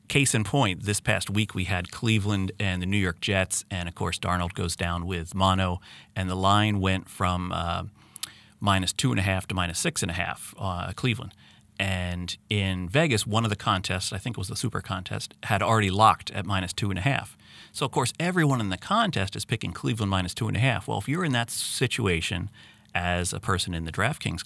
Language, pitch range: English, 95-115 Hz